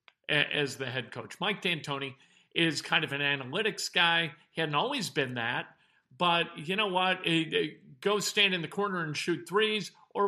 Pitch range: 150-195 Hz